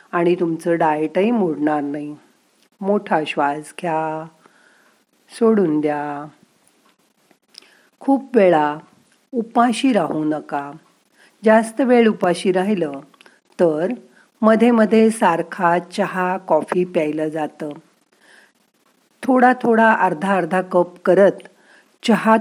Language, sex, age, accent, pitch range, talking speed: Marathi, female, 50-69, native, 160-220 Hz, 90 wpm